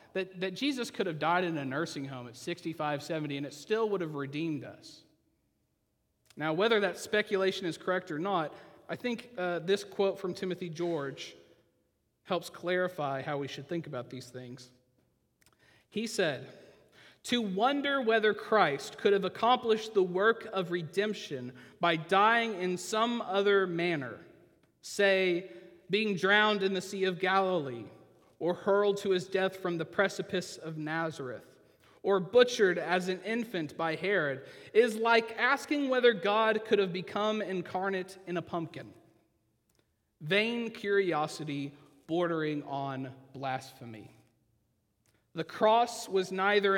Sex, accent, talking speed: male, American, 140 wpm